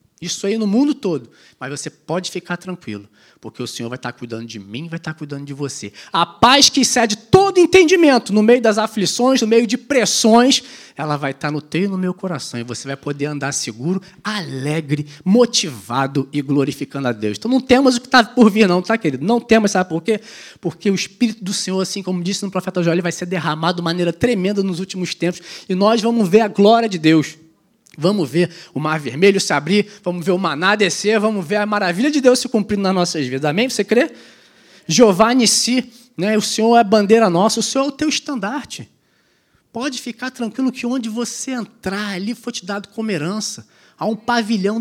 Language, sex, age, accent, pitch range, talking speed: Portuguese, male, 20-39, Brazilian, 170-240 Hz, 215 wpm